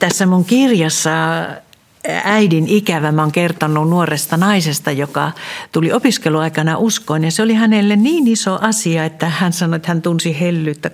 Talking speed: 155 wpm